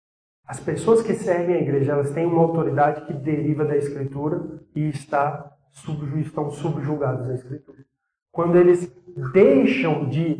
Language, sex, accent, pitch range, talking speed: Portuguese, male, Brazilian, 150-205 Hz, 135 wpm